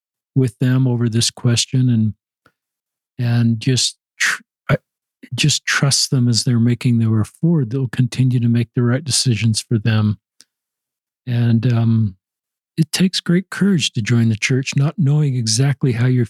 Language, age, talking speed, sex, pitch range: English, 50-69, 150 wpm, male, 120-145 Hz